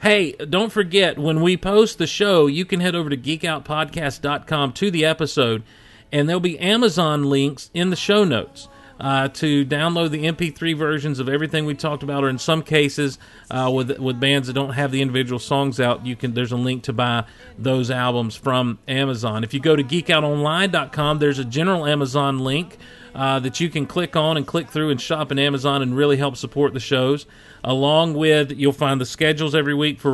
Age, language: 40-59, English